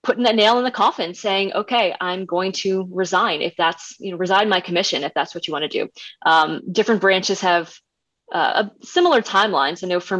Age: 20-39